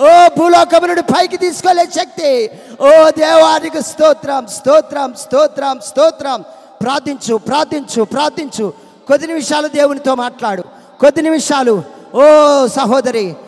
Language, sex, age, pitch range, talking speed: Telugu, male, 20-39, 250-320 Hz, 100 wpm